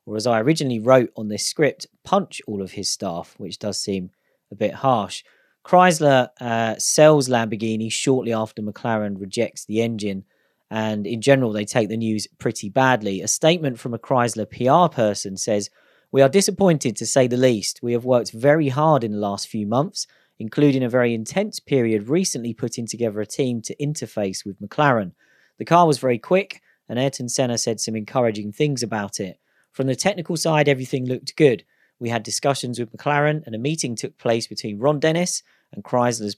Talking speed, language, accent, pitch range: 185 wpm, English, British, 110-150 Hz